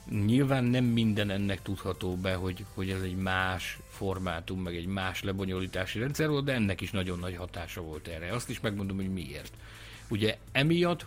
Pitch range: 95-135 Hz